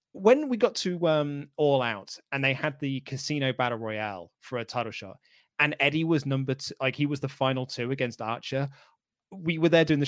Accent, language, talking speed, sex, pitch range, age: British, English, 215 wpm, male, 115-145 Hz, 20-39